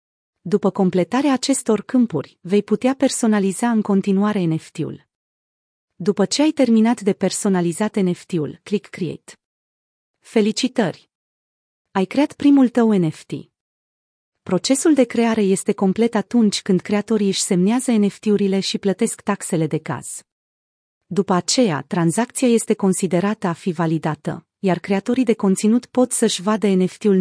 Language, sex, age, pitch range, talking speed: Romanian, female, 30-49, 180-225 Hz, 125 wpm